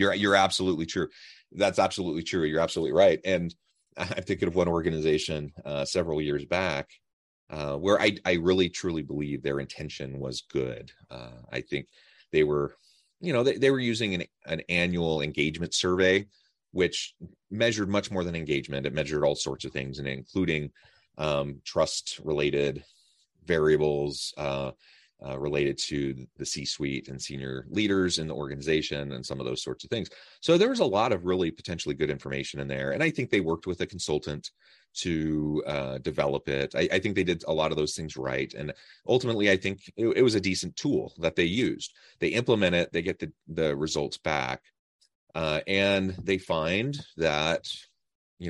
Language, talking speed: English, 180 wpm